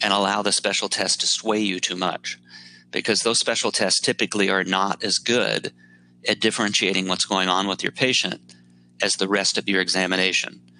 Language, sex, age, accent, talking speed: Turkish, male, 40-59, American, 185 wpm